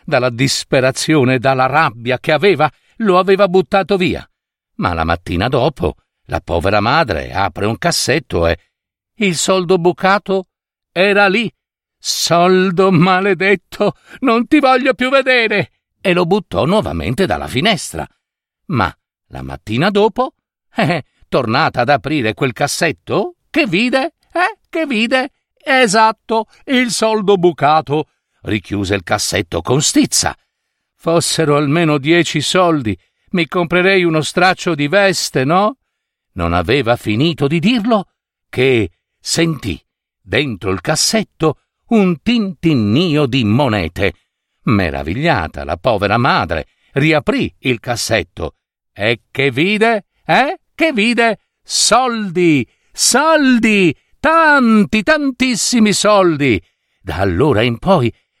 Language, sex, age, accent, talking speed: Italian, male, 60-79, native, 115 wpm